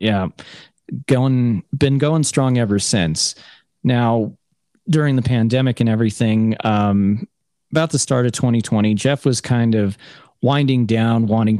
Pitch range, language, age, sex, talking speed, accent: 100-120 Hz, English, 30-49, male, 130 wpm, American